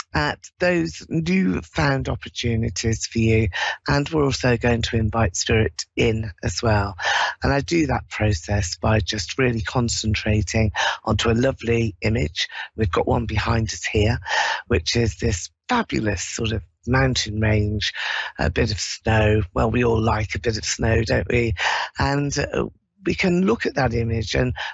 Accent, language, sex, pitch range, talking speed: British, English, female, 105-130 Hz, 165 wpm